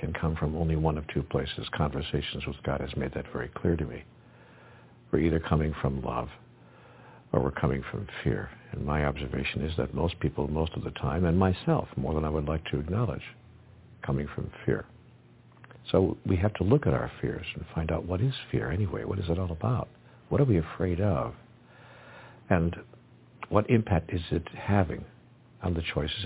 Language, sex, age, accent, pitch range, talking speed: English, male, 60-79, American, 75-105 Hz, 195 wpm